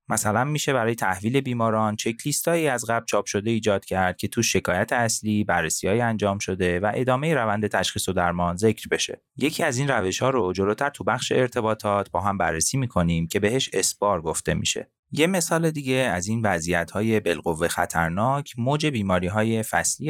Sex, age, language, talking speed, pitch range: male, 30-49, Persian, 180 wpm, 90-115 Hz